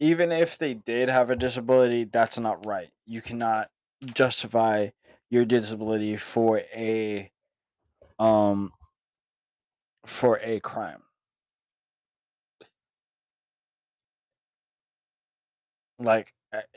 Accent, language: American, English